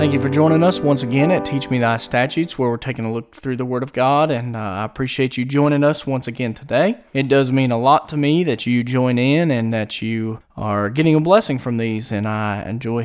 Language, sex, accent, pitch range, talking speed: English, male, American, 130-180 Hz, 255 wpm